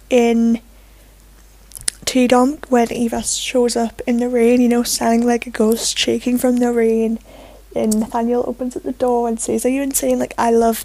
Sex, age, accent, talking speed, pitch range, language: female, 10-29, British, 185 wpm, 235-255 Hz, English